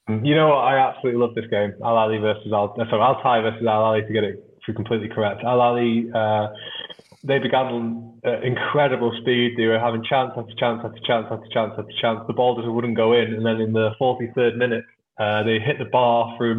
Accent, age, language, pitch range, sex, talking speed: British, 20-39, English, 110-120 Hz, male, 205 wpm